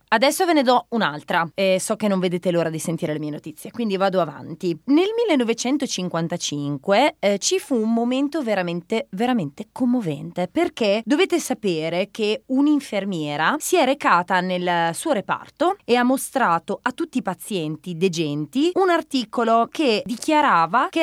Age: 20-39